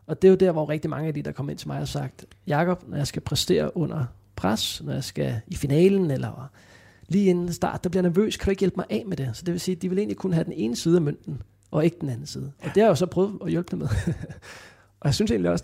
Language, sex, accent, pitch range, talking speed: Danish, male, native, 100-170 Hz, 310 wpm